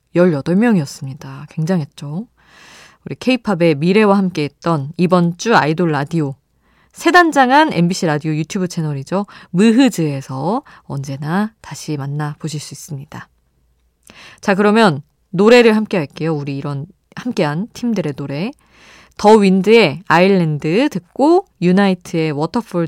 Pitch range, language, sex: 155-225 Hz, Korean, female